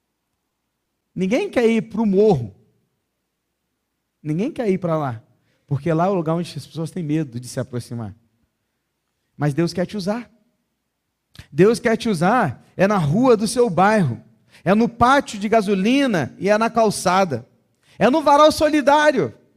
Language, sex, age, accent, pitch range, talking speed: Portuguese, male, 40-59, Brazilian, 135-225 Hz, 160 wpm